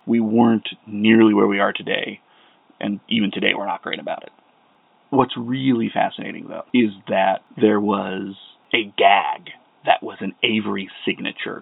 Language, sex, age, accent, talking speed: English, male, 30-49, American, 155 wpm